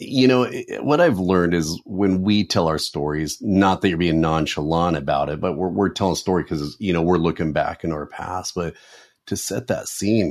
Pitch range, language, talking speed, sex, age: 90-105 Hz, English, 220 wpm, male, 30-49